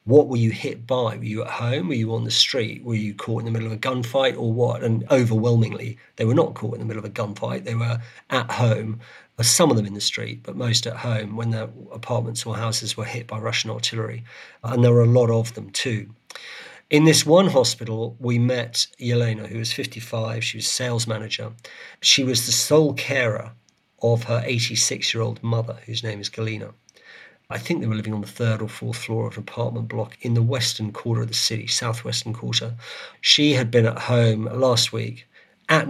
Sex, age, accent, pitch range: male, 50-69, British, 110-125 Hz